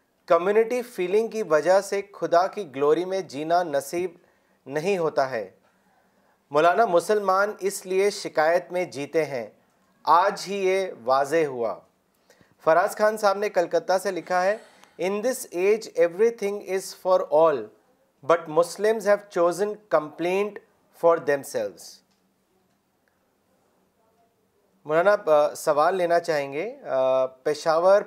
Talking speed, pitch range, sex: 120 wpm, 165-205 Hz, male